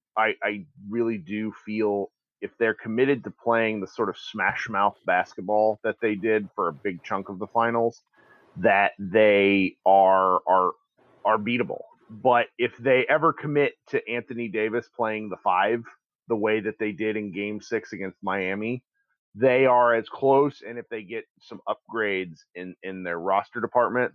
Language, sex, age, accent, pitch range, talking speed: English, male, 30-49, American, 100-120 Hz, 170 wpm